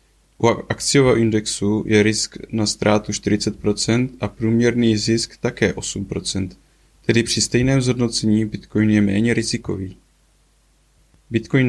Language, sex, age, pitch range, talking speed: Czech, male, 20-39, 105-120 Hz, 115 wpm